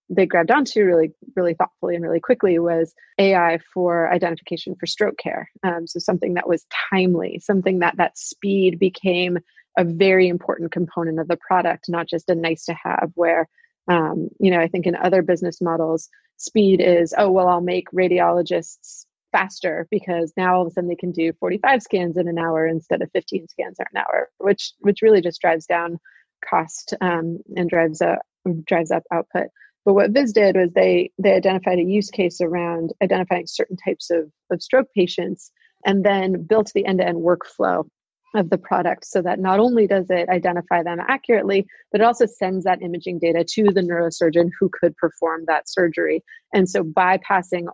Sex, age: female, 30-49